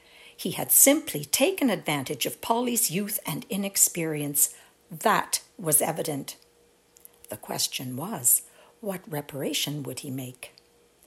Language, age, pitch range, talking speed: English, 60-79, 150-215 Hz, 115 wpm